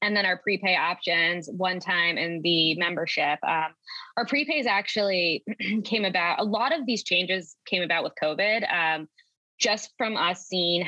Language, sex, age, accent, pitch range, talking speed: English, female, 20-39, American, 170-215 Hz, 165 wpm